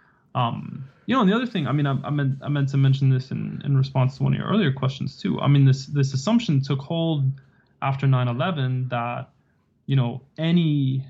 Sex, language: male, English